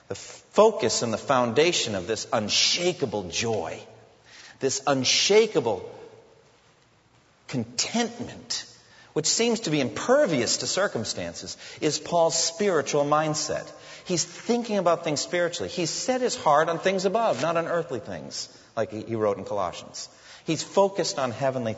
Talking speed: 130 wpm